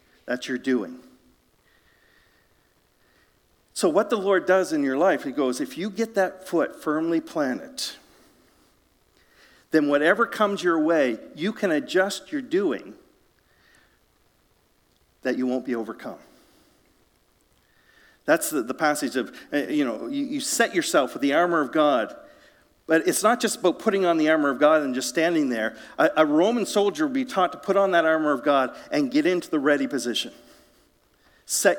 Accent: American